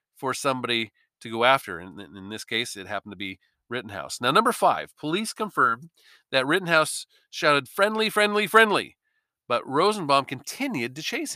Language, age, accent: English, 40-59, American